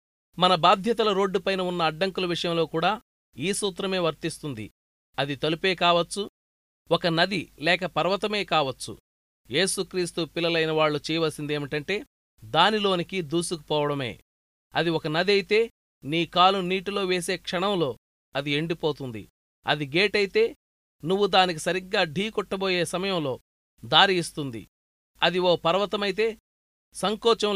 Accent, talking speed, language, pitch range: native, 105 wpm, Telugu, 150-195 Hz